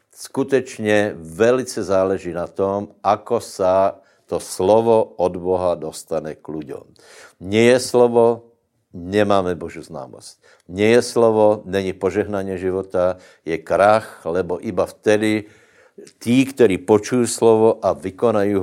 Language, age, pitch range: Slovak, 60-79, 90-110 Hz